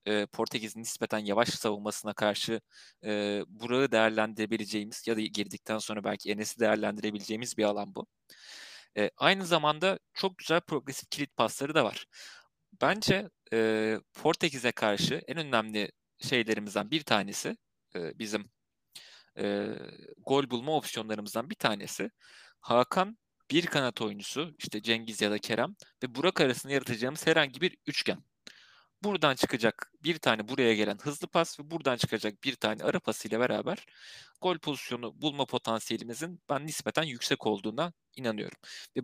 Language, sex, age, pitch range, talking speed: Turkish, male, 30-49, 110-145 Hz, 125 wpm